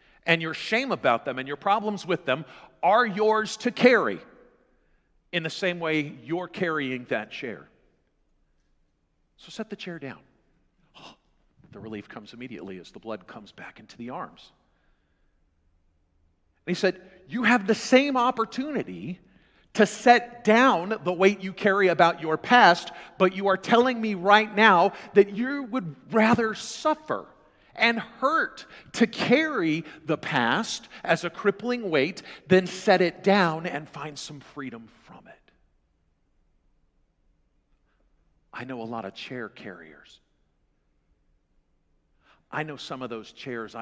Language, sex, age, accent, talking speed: English, male, 50-69, American, 140 wpm